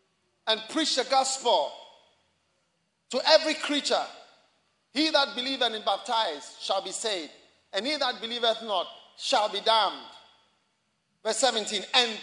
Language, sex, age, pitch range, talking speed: English, male, 40-59, 225-345 Hz, 130 wpm